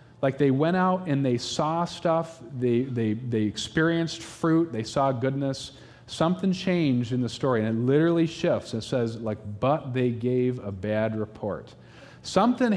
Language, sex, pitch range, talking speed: English, male, 120-165 Hz, 165 wpm